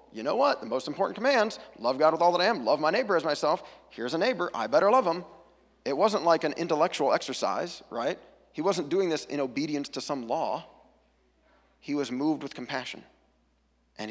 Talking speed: 205 wpm